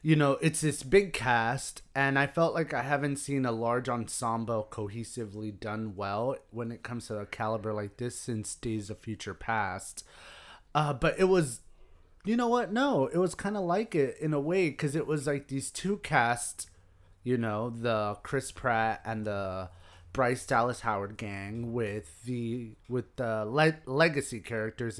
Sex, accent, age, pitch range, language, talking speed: male, American, 30-49, 115-145 Hz, English, 180 wpm